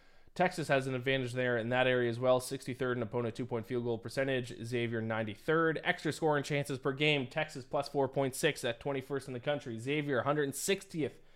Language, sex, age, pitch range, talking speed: English, male, 20-39, 120-145 Hz, 180 wpm